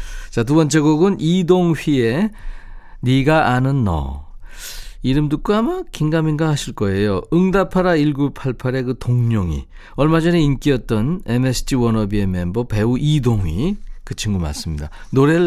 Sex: male